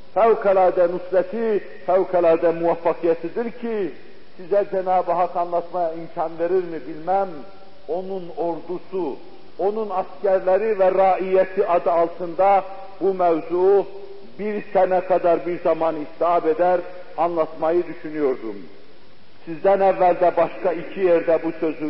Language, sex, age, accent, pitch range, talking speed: Turkish, male, 50-69, native, 170-220 Hz, 110 wpm